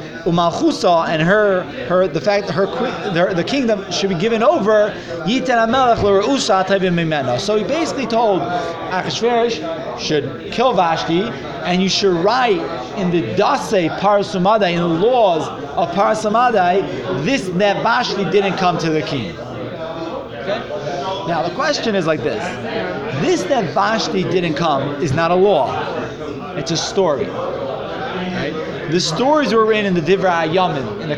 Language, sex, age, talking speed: English, male, 30-49, 135 wpm